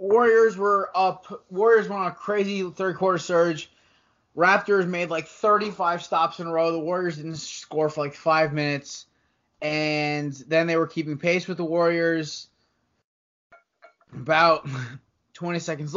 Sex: male